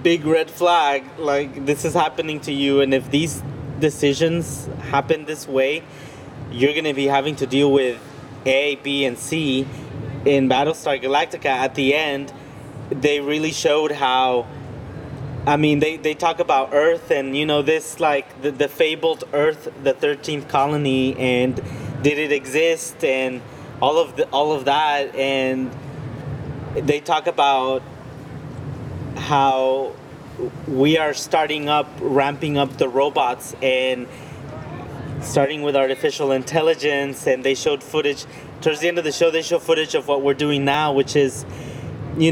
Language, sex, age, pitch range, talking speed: English, male, 20-39, 135-150 Hz, 150 wpm